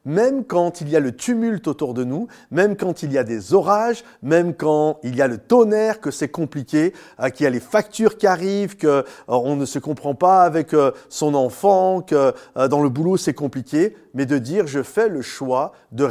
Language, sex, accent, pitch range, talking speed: French, male, French, 135-185 Hz, 210 wpm